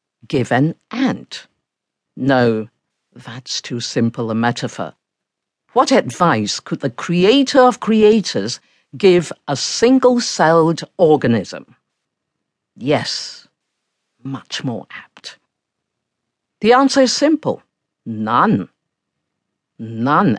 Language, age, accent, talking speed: English, 50-69, British, 90 wpm